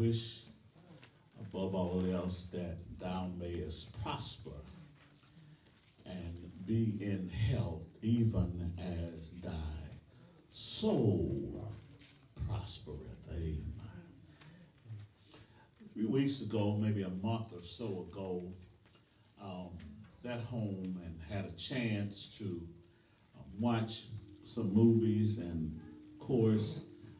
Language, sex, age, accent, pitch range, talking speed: English, male, 50-69, American, 95-115 Hz, 95 wpm